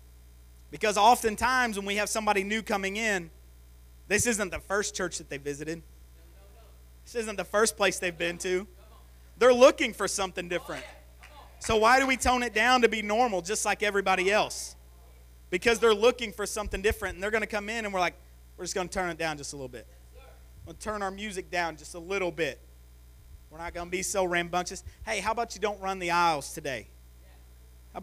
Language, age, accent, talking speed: English, 30-49, American, 210 wpm